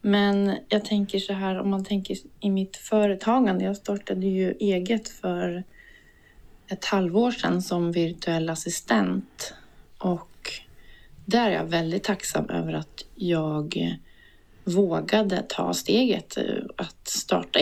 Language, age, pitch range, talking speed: Swedish, 30-49, 160-205 Hz, 125 wpm